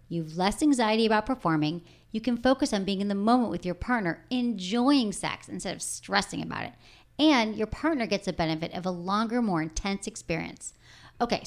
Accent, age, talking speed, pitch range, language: American, 40-59, 190 wpm, 180-250 Hz, English